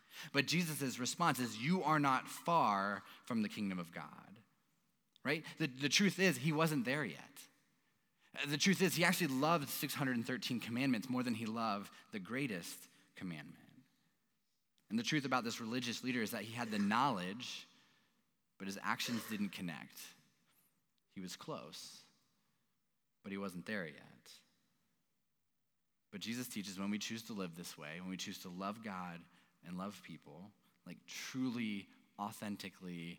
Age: 30-49